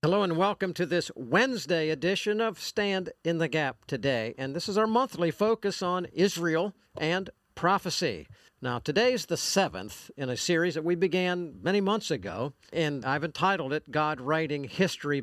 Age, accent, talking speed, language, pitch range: 50-69, American, 170 wpm, English, 130-175 Hz